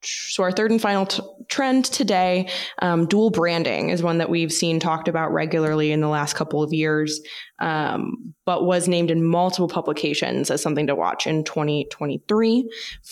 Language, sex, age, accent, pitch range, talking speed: English, female, 20-39, American, 155-195 Hz, 175 wpm